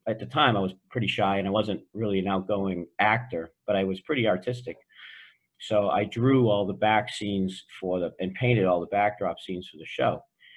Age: 50-69